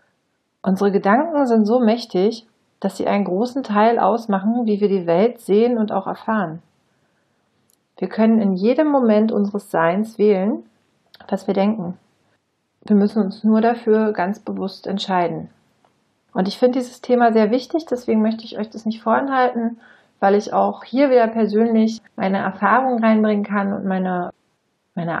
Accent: German